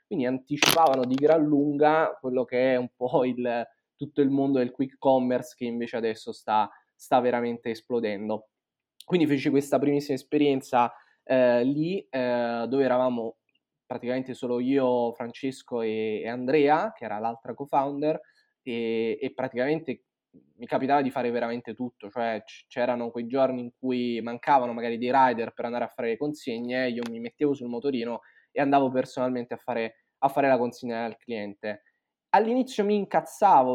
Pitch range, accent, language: 120-145 Hz, native, Italian